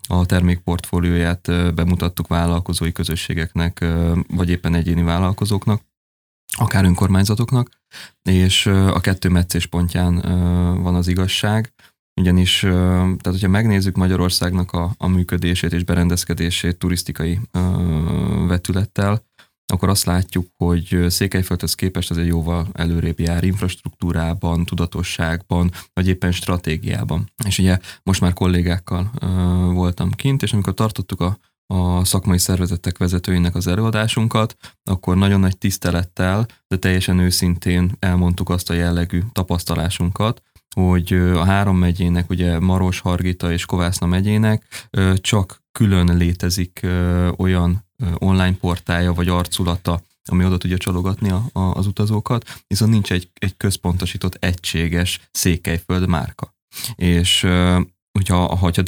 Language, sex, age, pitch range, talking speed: Hungarian, male, 20-39, 85-95 Hz, 115 wpm